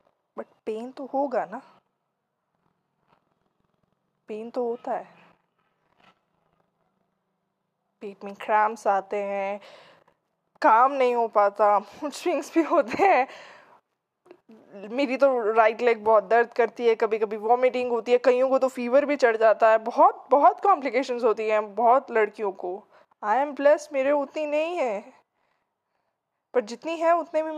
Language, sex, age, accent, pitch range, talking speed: Hindi, female, 20-39, native, 225-290 Hz, 135 wpm